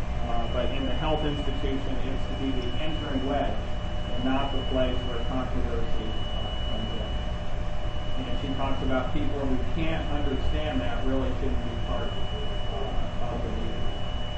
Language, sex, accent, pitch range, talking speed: English, female, American, 100-130 Hz, 160 wpm